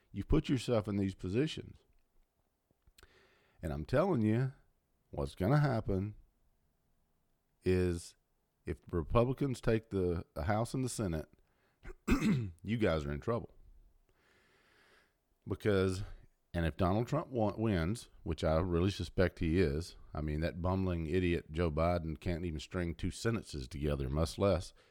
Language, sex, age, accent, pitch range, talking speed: English, male, 50-69, American, 85-110 Hz, 135 wpm